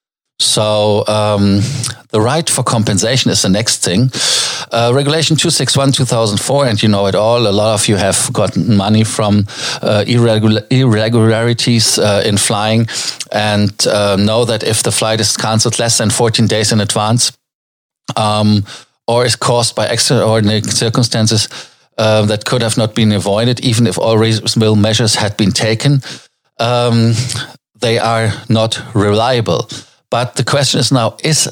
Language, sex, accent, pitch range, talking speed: German, male, German, 105-120 Hz, 150 wpm